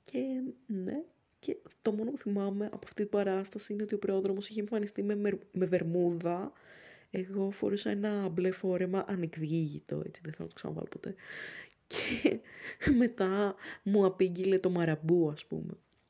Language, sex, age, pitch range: Greek, female, 20-39, 180-210 Hz